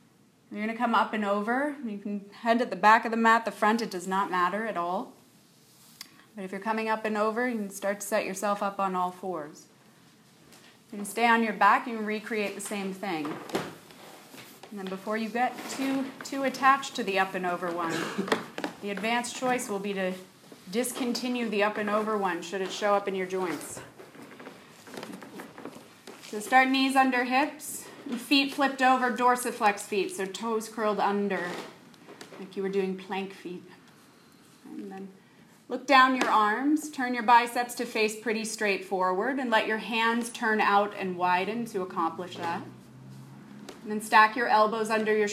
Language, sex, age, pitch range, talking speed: English, female, 30-49, 195-235 Hz, 185 wpm